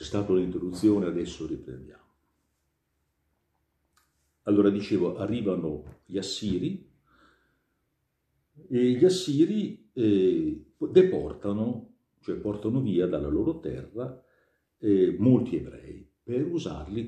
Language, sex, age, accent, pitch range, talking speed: Italian, male, 60-79, native, 75-115 Hz, 90 wpm